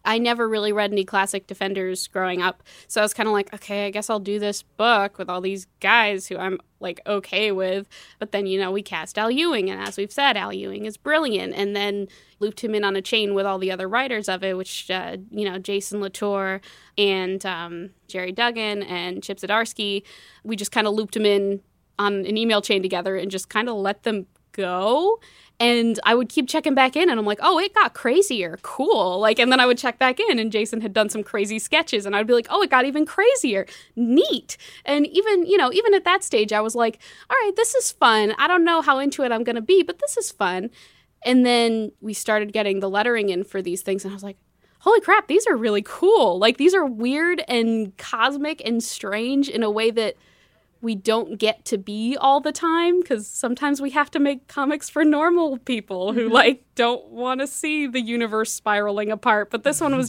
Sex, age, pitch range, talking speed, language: female, 10-29, 200-260 Hz, 230 wpm, English